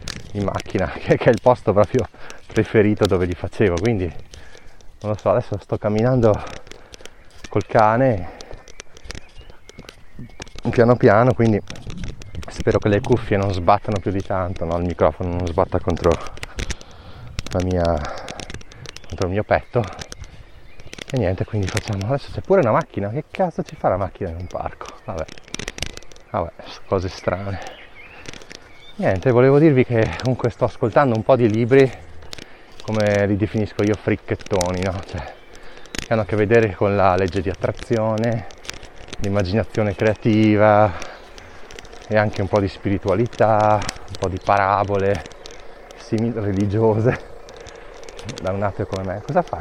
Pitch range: 95-120 Hz